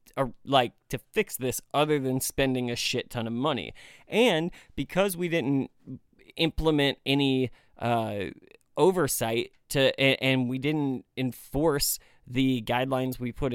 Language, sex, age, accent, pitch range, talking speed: English, male, 30-49, American, 125-160 Hz, 130 wpm